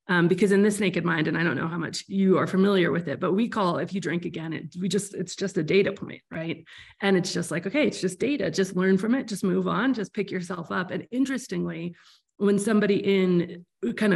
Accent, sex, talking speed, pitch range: American, female, 245 wpm, 175-205 Hz